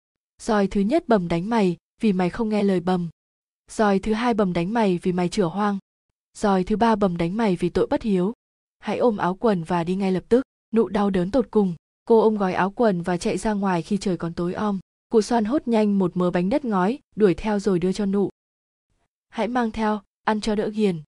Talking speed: 230 wpm